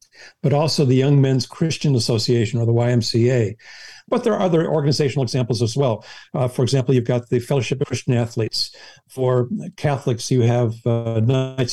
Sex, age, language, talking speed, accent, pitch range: male, 60-79, English, 170 wpm, American, 120-140 Hz